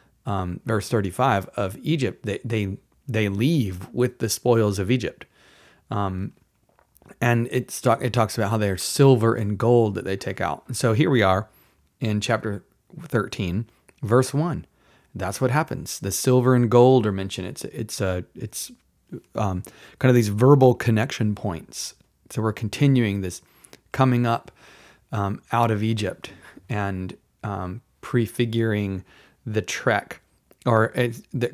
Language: English